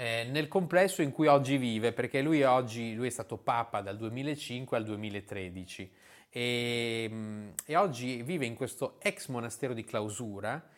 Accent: native